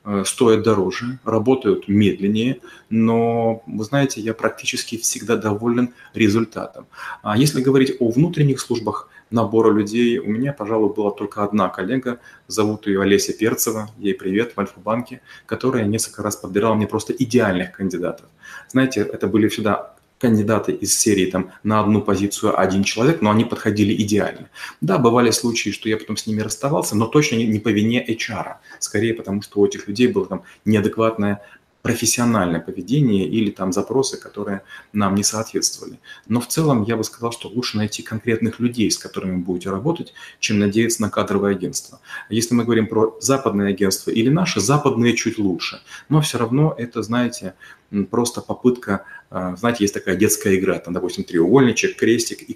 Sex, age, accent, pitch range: male, 30-49, native, 100-120 Hz